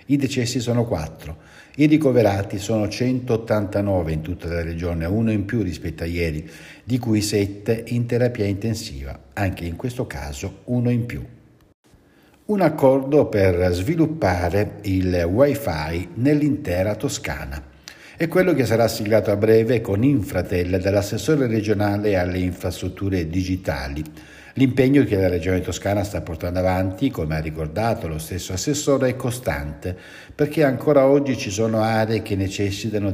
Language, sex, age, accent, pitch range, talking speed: Italian, male, 60-79, native, 90-130 Hz, 140 wpm